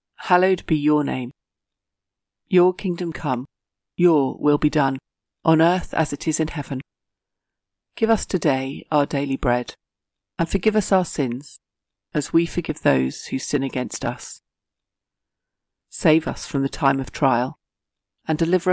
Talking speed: 145 wpm